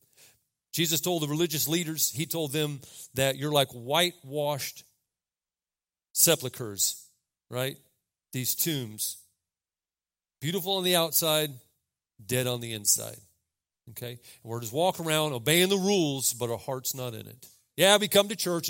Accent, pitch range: American, 125-175 Hz